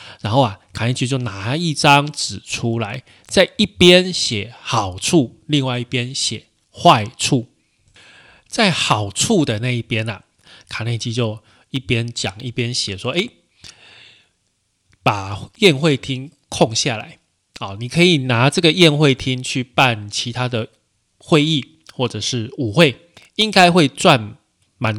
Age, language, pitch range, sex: 20-39, Chinese, 110-140 Hz, male